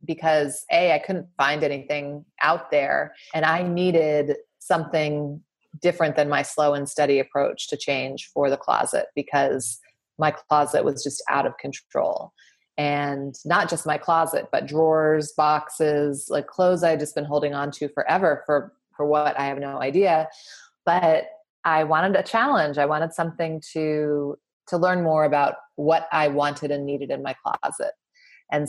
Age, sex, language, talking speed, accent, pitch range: 30-49, female, English, 165 wpm, American, 145-165 Hz